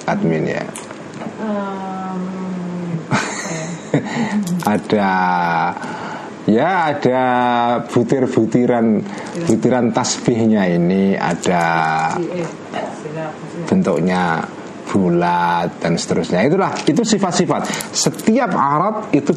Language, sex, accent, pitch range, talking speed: Indonesian, male, native, 105-170 Hz, 60 wpm